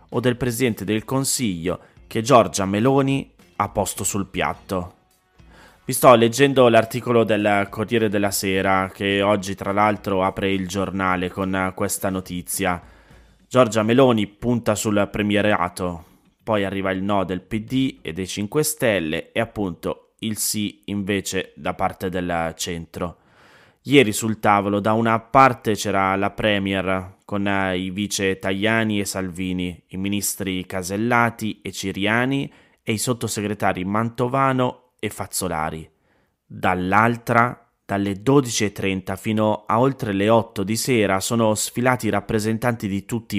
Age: 20-39